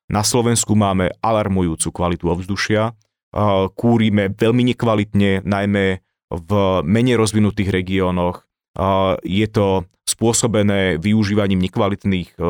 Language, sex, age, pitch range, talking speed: Slovak, male, 30-49, 95-110 Hz, 90 wpm